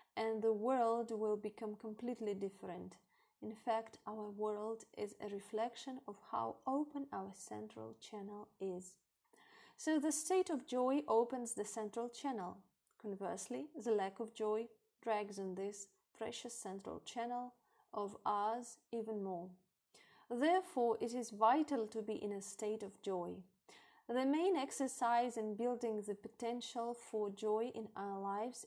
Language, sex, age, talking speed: English, female, 30-49, 140 wpm